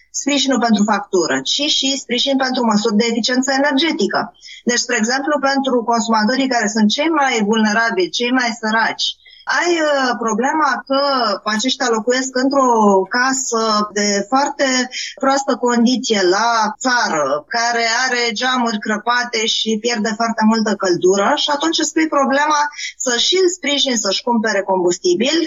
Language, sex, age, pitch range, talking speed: Romanian, female, 20-39, 225-285 Hz, 135 wpm